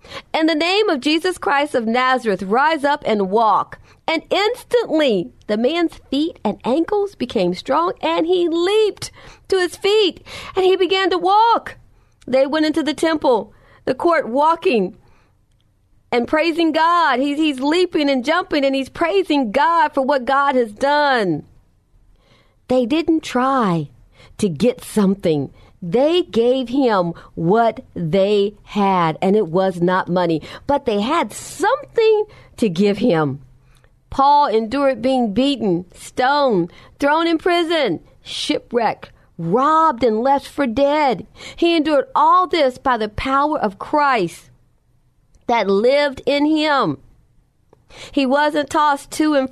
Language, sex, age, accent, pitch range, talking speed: English, female, 40-59, American, 215-315 Hz, 135 wpm